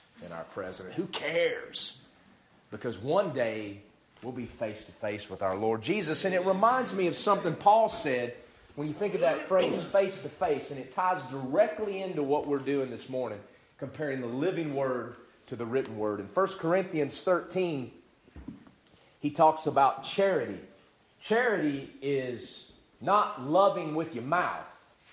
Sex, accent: male, American